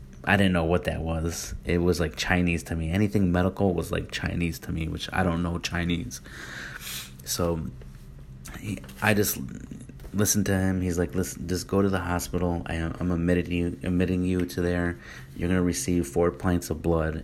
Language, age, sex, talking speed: English, 30-49, male, 180 wpm